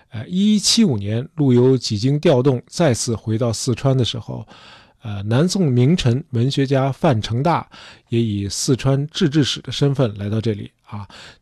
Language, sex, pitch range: Chinese, male, 115-150 Hz